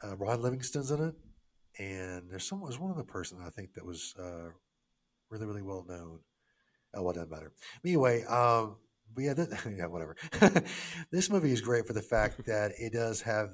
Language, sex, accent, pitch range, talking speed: English, male, American, 90-115 Hz, 190 wpm